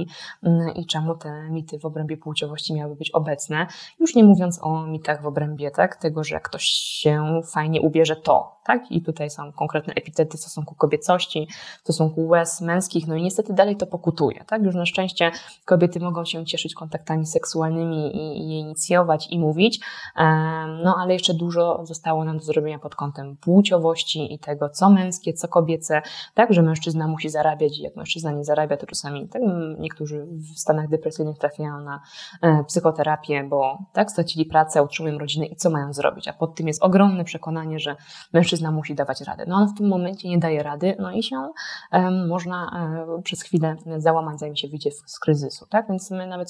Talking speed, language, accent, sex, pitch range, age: 185 wpm, Polish, native, female, 155-175 Hz, 20-39